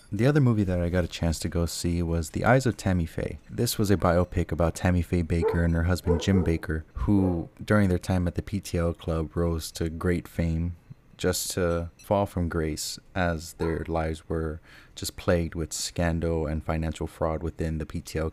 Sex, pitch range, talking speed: male, 80-95 Hz, 200 wpm